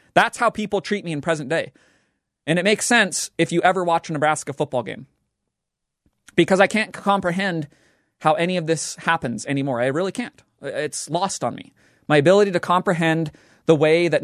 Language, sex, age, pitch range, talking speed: English, male, 30-49, 140-180 Hz, 185 wpm